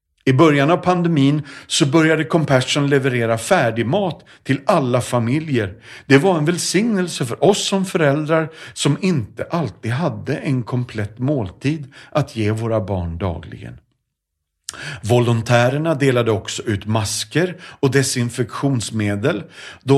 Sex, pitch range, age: male, 105-145 Hz, 40-59